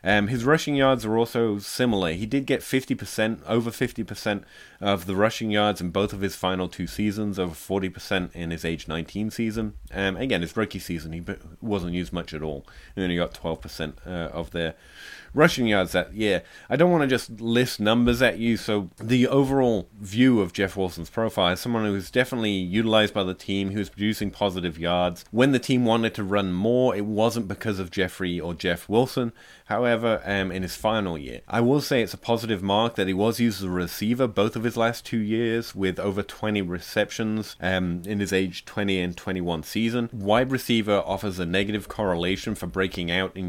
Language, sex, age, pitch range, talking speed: English, male, 30-49, 90-115 Hz, 205 wpm